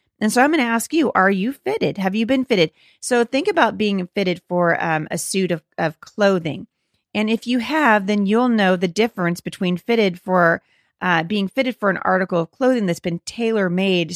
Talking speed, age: 205 wpm, 30-49